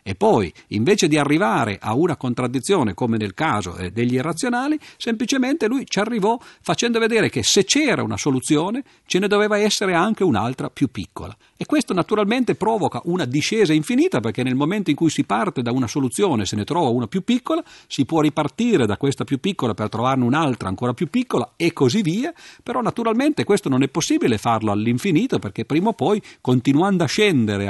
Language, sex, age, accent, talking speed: Italian, male, 50-69, native, 185 wpm